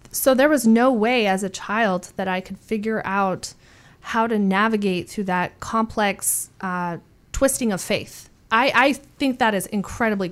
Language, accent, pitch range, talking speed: English, American, 195-230 Hz, 170 wpm